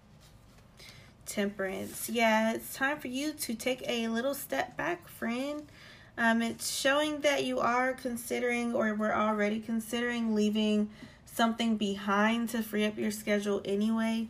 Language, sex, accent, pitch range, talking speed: English, female, American, 180-220 Hz, 140 wpm